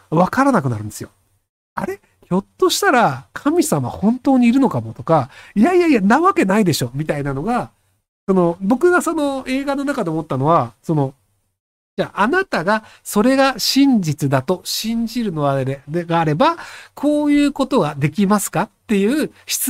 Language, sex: Japanese, male